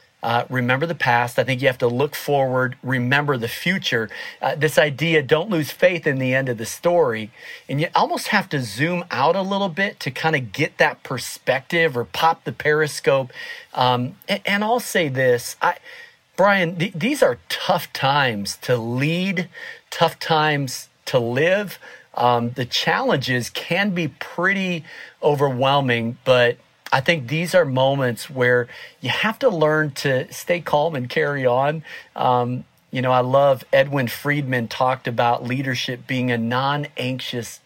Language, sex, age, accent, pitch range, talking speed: English, male, 40-59, American, 125-165 Hz, 160 wpm